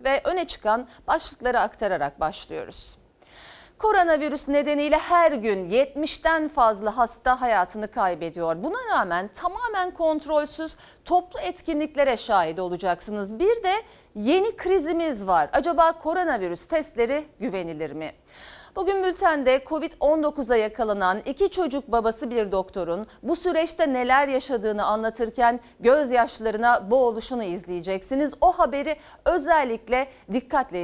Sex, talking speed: female, 105 wpm